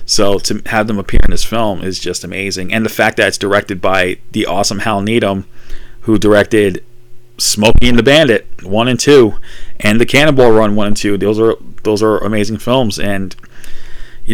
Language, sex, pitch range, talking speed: English, male, 100-120 Hz, 195 wpm